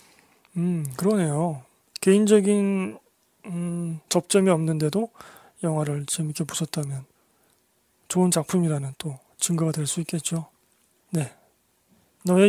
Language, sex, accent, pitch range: Korean, male, native, 165-200 Hz